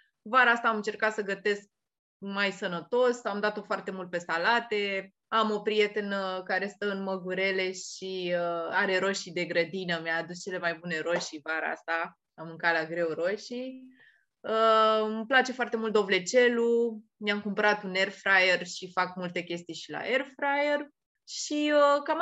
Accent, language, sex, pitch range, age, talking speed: native, Romanian, female, 180-225 Hz, 20-39, 165 wpm